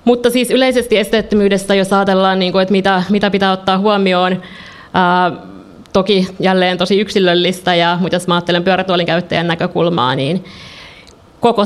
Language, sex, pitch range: Finnish, female, 175-190 Hz